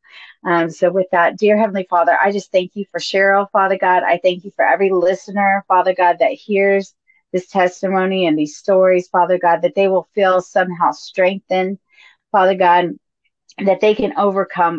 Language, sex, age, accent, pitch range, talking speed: English, female, 30-49, American, 170-200 Hz, 185 wpm